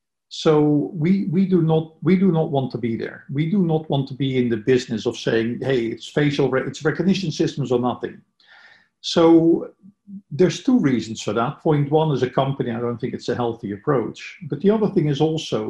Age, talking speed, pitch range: 50-69, 215 wpm, 120-160 Hz